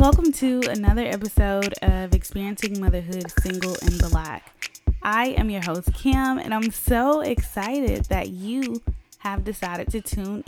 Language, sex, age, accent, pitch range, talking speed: English, female, 10-29, American, 180-255 Hz, 145 wpm